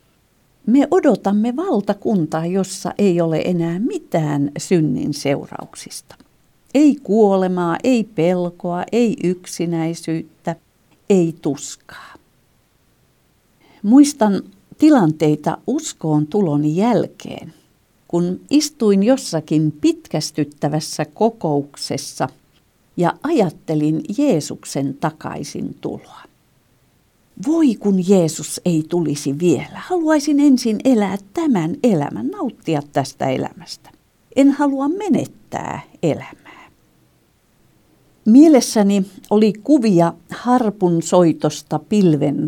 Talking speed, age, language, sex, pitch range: 80 wpm, 50-69, Finnish, female, 155-235 Hz